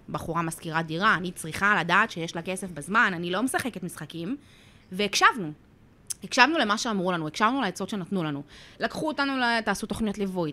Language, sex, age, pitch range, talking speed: Hebrew, female, 20-39, 175-250 Hz, 165 wpm